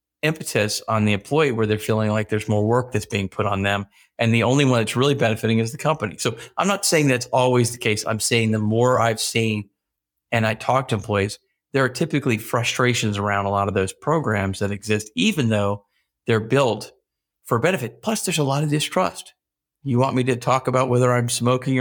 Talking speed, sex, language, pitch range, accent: 215 wpm, male, English, 110-130 Hz, American